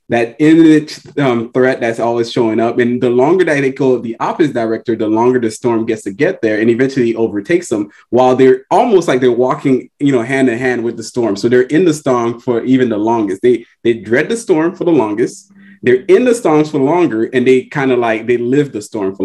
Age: 20-39